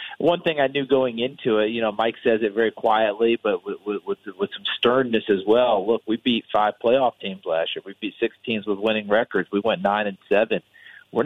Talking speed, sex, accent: 230 wpm, male, American